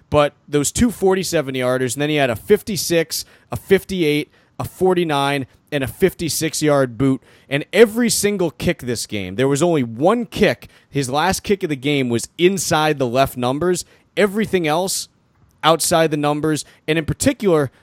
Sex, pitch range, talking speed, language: male, 130-165 Hz, 160 wpm, English